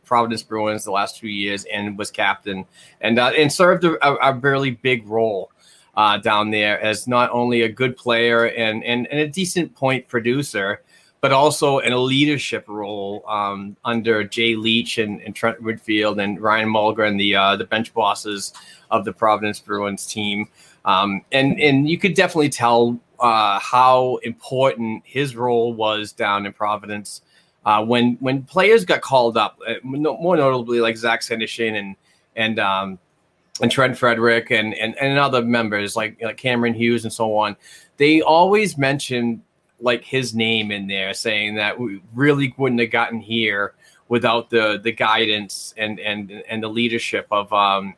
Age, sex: 30-49, male